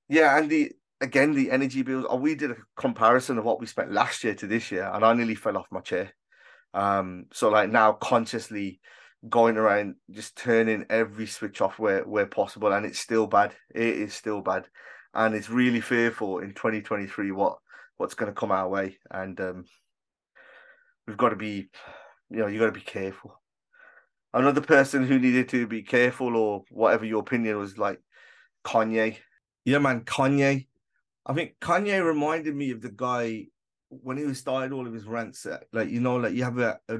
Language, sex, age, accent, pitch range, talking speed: English, male, 30-49, British, 110-130 Hz, 190 wpm